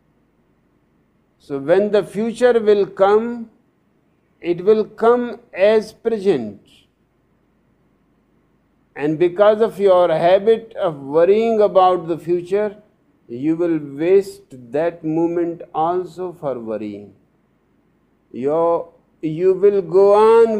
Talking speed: 95 wpm